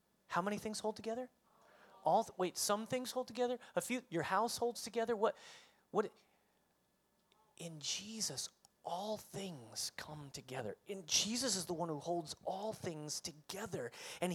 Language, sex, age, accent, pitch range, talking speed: English, male, 30-49, American, 170-225 Hz, 160 wpm